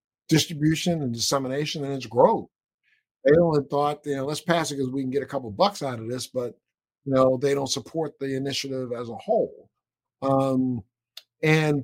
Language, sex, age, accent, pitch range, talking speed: English, male, 50-69, American, 125-150 Hz, 190 wpm